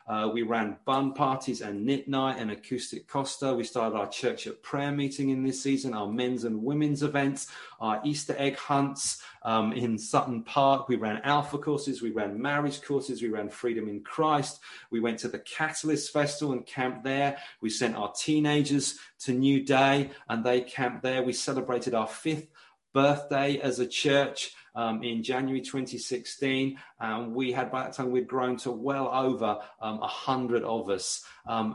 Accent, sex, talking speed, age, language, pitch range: British, male, 180 wpm, 40-59, English, 115-140 Hz